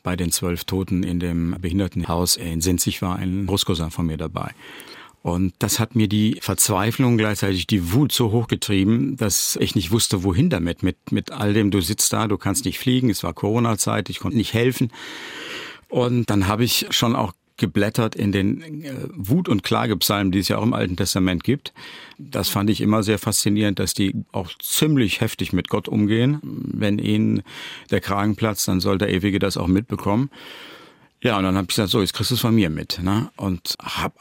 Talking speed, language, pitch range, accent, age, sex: 195 wpm, German, 95-110 Hz, German, 50-69, male